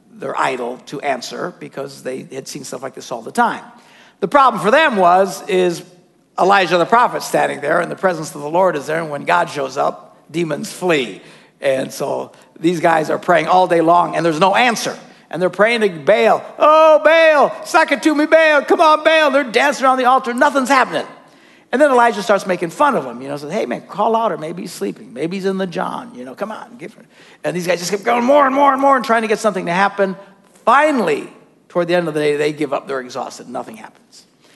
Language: English